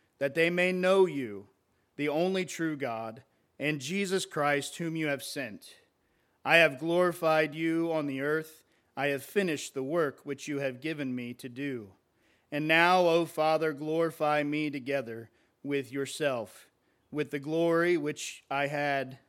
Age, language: 40-59, English